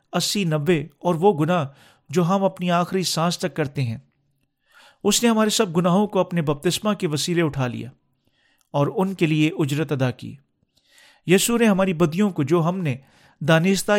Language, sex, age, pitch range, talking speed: Urdu, male, 40-59, 140-185 Hz, 175 wpm